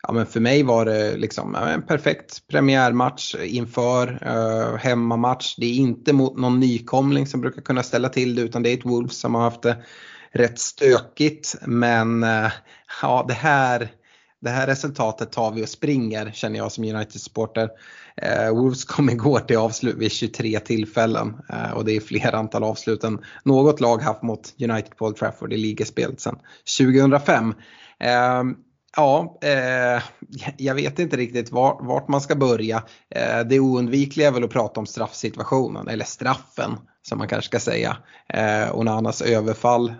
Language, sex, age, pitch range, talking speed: Swedish, male, 20-39, 110-130 Hz, 165 wpm